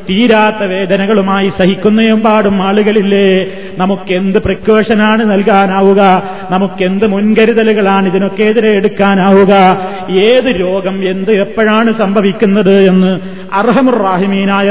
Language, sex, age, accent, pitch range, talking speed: Malayalam, male, 30-49, native, 195-215 Hz, 80 wpm